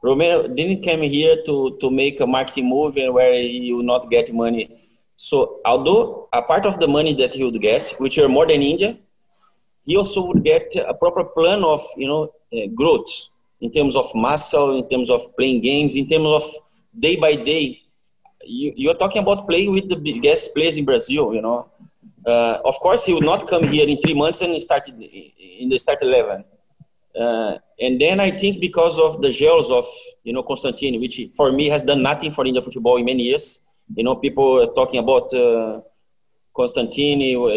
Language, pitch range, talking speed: English, 125-205 Hz, 195 wpm